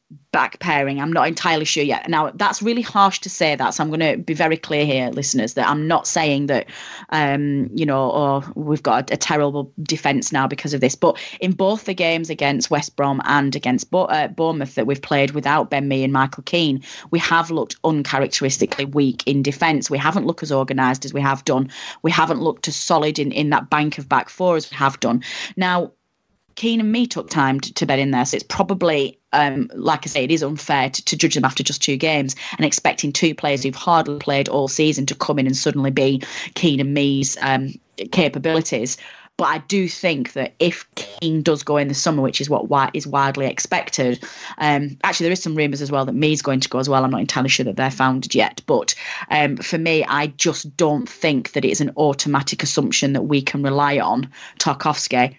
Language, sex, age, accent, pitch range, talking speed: English, female, 30-49, British, 135-160 Hz, 220 wpm